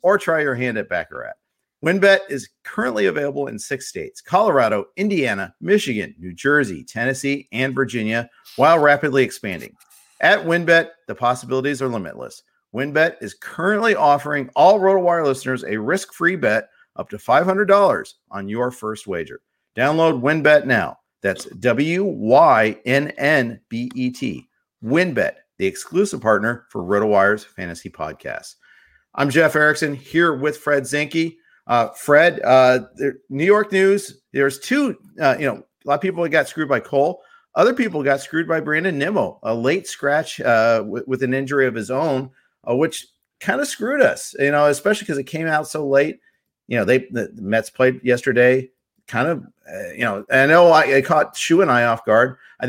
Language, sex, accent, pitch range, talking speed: English, male, American, 125-165 Hz, 160 wpm